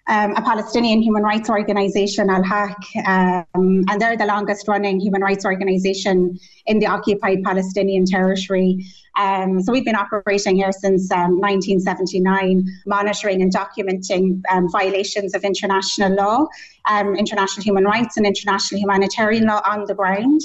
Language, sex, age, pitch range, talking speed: English, female, 30-49, 195-215 Hz, 140 wpm